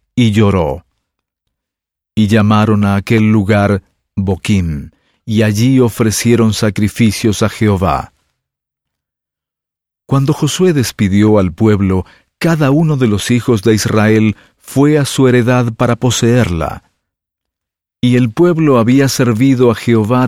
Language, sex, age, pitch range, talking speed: English, male, 50-69, 100-125 Hz, 115 wpm